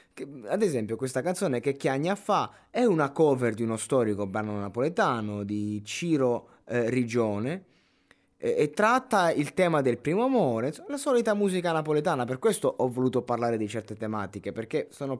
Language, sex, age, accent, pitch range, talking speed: Italian, male, 20-39, native, 110-145 Hz, 160 wpm